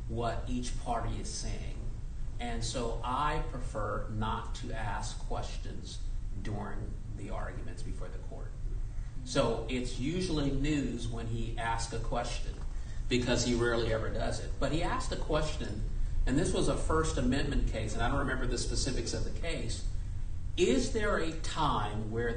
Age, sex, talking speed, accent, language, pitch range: 50-69, male, 160 wpm, American, English, 110-130 Hz